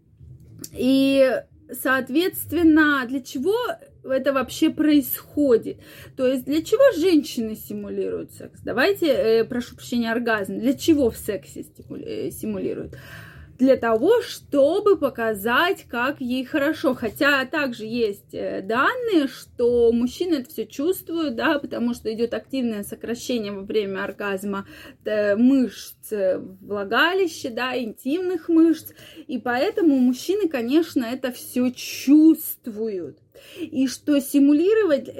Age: 20-39